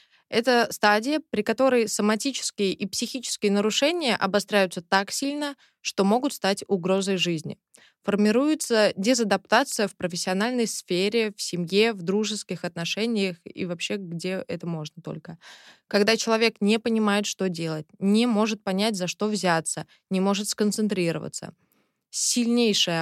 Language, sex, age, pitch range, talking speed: Russian, female, 20-39, 190-230 Hz, 125 wpm